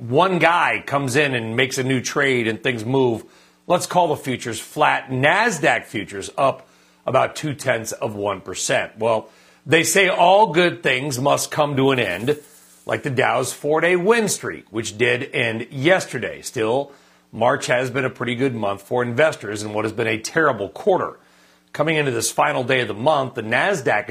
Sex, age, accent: male, 40-59, American